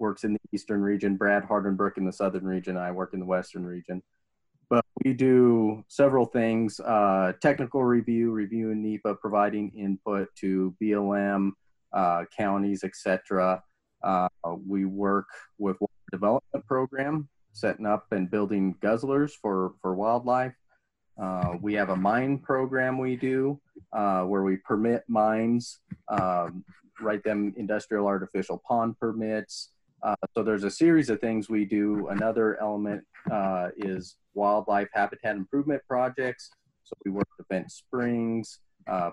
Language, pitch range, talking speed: English, 95-110 Hz, 145 wpm